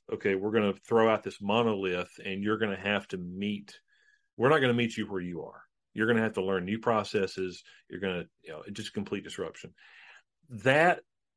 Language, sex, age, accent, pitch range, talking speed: English, male, 40-59, American, 95-115 Hz, 215 wpm